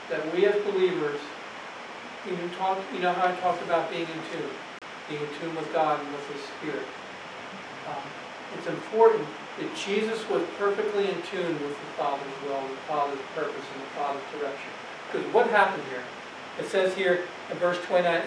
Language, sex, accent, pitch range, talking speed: English, male, American, 160-200 Hz, 175 wpm